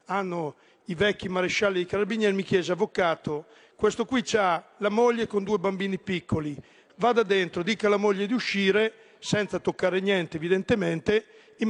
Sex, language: male, Italian